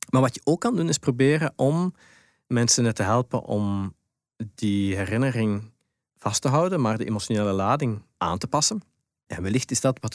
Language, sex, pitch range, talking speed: Dutch, male, 105-130 Hz, 175 wpm